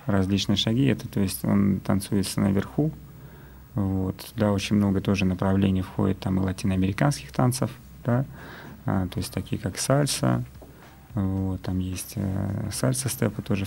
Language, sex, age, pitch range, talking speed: Russian, male, 30-49, 95-110 Hz, 145 wpm